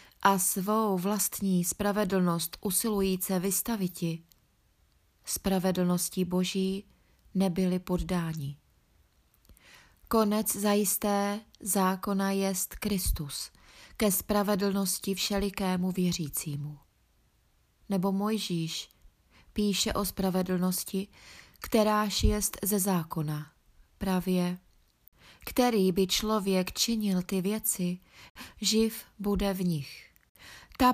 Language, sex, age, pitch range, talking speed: Czech, female, 20-39, 180-210 Hz, 80 wpm